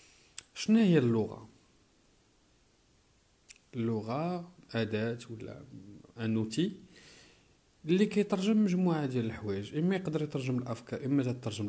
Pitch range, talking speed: 110-145 Hz, 90 wpm